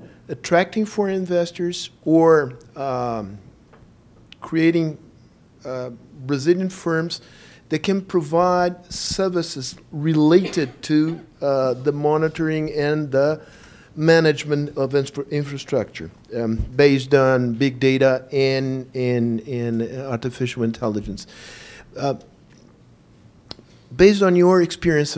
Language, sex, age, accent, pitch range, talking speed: Portuguese, male, 50-69, American, 125-165 Hz, 90 wpm